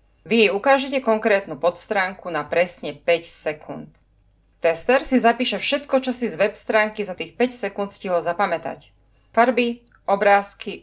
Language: Slovak